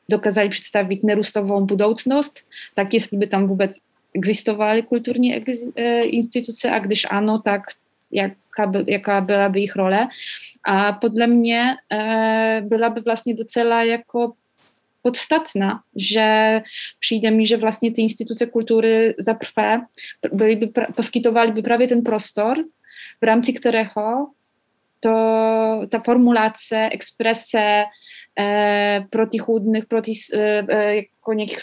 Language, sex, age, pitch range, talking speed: Czech, female, 20-39, 210-235 Hz, 115 wpm